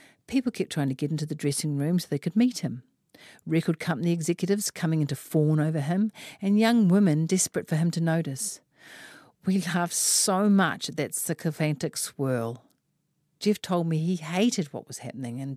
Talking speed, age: 185 wpm, 50-69